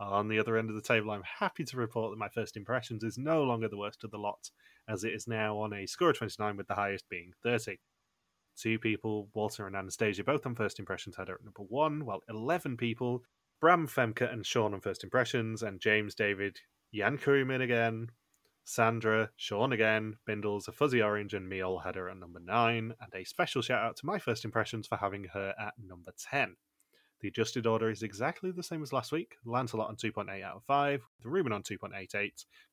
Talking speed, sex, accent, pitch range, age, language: 210 wpm, male, British, 100-125 Hz, 20-39, English